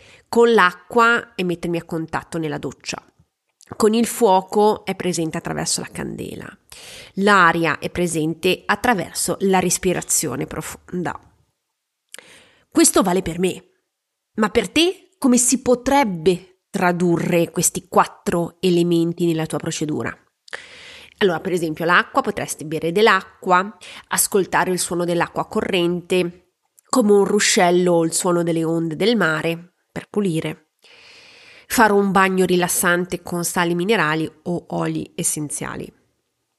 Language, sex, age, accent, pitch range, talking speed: Italian, female, 30-49, native, 170-215 Hz, 120 wpm